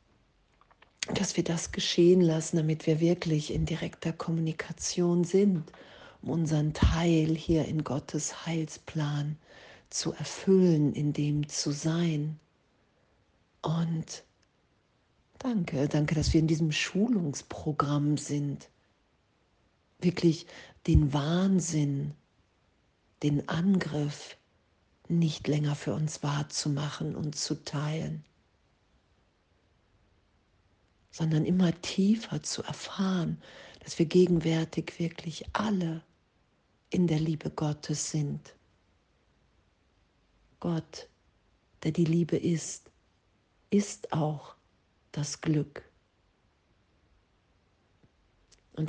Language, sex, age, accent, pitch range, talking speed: German, female, 50-69, German, 145-165 Hz, 90 wpm